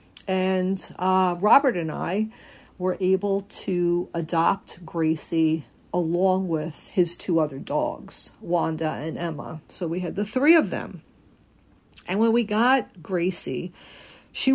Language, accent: English, American